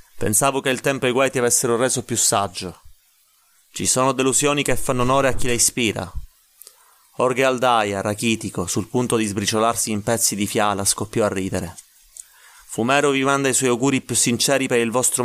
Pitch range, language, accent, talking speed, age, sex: 105-125 Hz, Italian, native, 180 wpm, 30-49, male